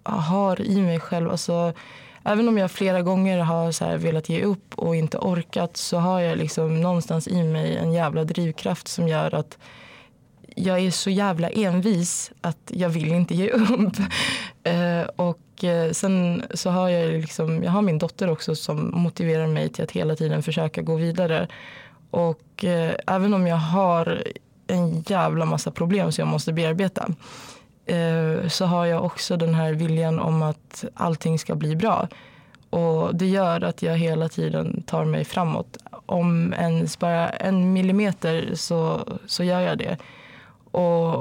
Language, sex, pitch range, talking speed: Swedish, female, 160-180 Hz, 165 wpm